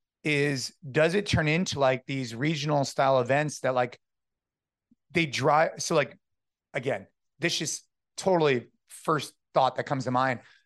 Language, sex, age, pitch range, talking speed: English, male, 30-49, 130-155 Hz, 145 wpm